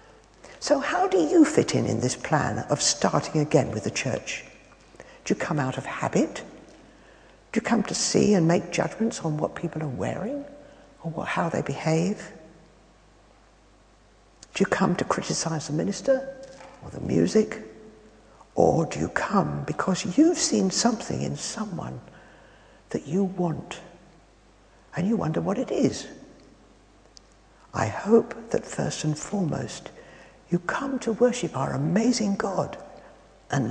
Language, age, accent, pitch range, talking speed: English, 60-79, British, 155-250 Hz, 145 wpm